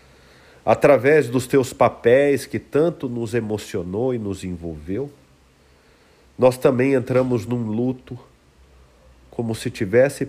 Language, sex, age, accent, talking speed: Portuguese, male, 50-69, Brazilian, 110 wpm